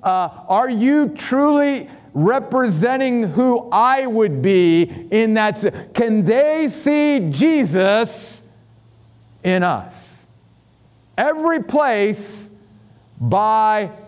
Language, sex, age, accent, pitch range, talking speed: English, male, 50-69, American, 140-210 Hz, 85 wpm